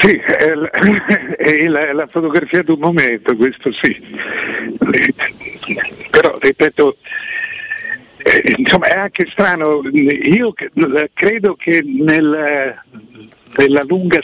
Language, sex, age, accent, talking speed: Italian, male, 60-79, native, 110 wpm